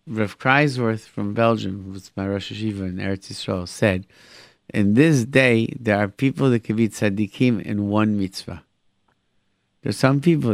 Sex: male